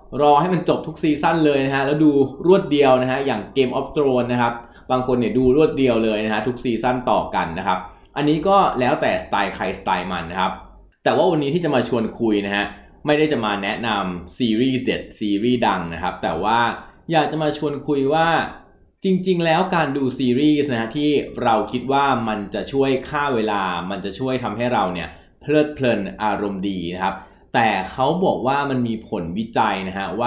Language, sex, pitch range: Thai, male, 105-145 Hz